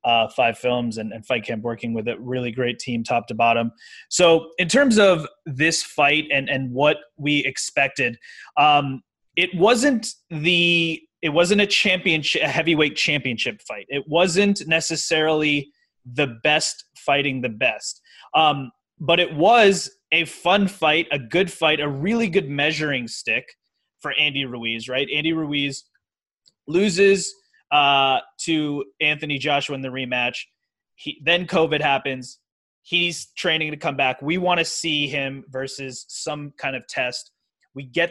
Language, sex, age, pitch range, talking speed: English, male, 20-39, 130-165 Hz, 155 wpm